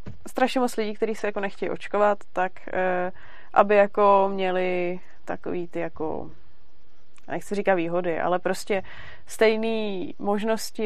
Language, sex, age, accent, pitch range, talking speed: Czech, female, 20-39, native, 180-200 Hz, 125 wpm